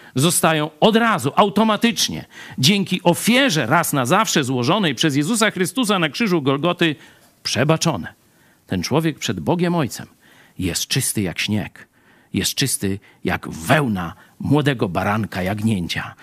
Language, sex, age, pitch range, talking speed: Polish, male, 50-69, 125-195 Hz, 120 wpm